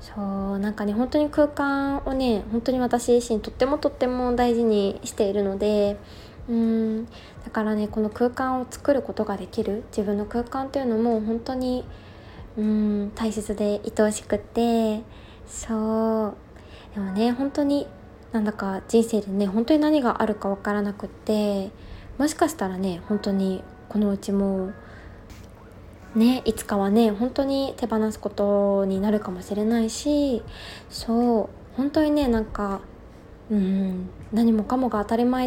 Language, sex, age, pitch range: Japanese, female, 20-39, 205-245 Hz